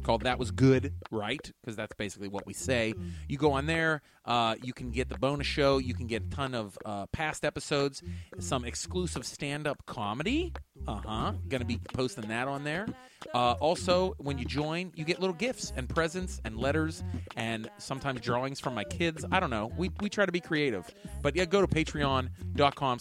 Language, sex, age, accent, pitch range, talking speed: English, male, 30-49, American, 100-150 Hz, 200 wpm